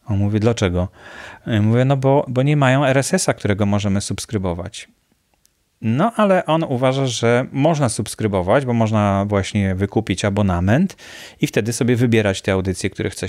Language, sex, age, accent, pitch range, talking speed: English, male, 30-49, Polish, 110-135 Hz, 155 wpm